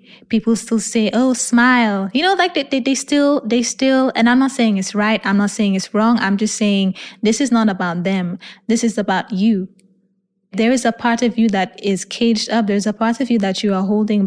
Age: 20-39